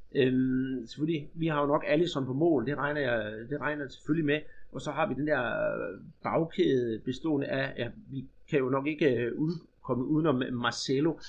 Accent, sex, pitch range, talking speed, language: native, male, 135-180 Hz, 200 wpm, Danish